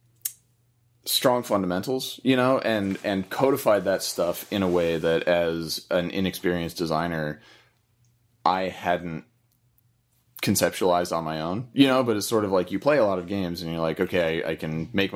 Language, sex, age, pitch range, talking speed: English, male, 30-49, 85-115 Hz, 175 wpm